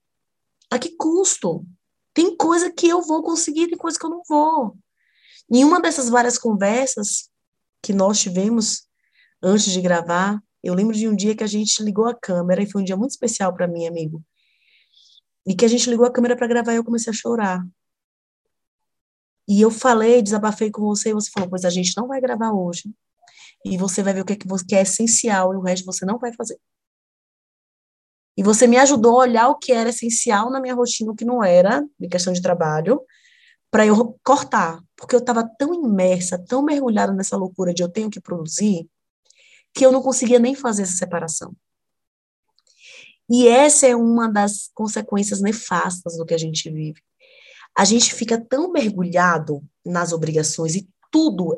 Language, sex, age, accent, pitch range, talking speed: Portuguese, female, 20-39, Brazilian, 185-250 Hz, 185 wpm